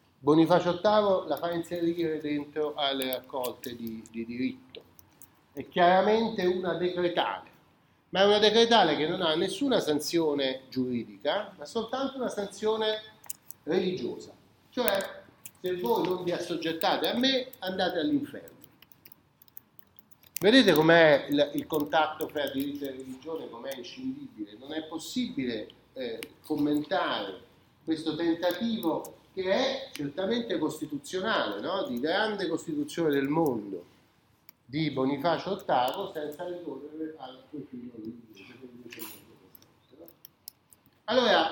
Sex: male